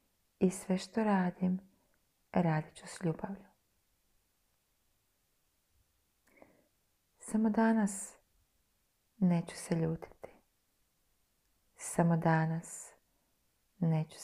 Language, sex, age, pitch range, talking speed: Croatian, female, 30-49, 160-180 Hz, 65 wpm